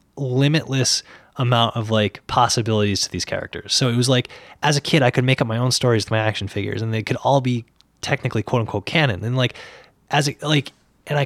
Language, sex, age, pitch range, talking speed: English, male, 20-39, 110-140 Hz, 225 wpm